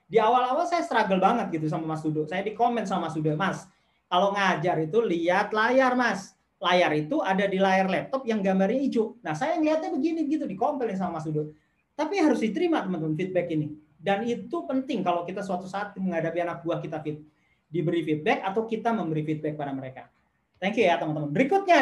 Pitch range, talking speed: 175-240 Hz, 195 wpm